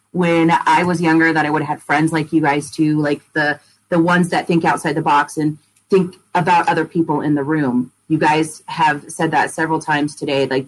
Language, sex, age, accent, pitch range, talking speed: English, female, 30-49, American, 145-170 Hz, 225 wpm